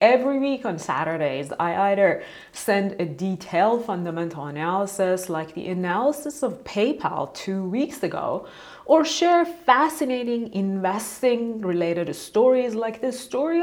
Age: 30-49